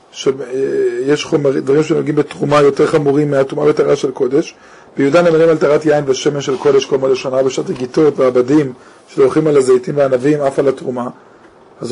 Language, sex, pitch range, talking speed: Hebrew, male, 145-200 Hz, 170 wpm